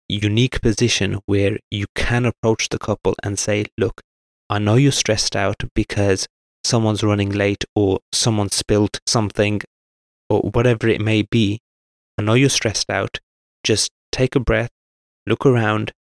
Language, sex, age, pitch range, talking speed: English, male, 20-39, 100-120 Hz, 150 wpm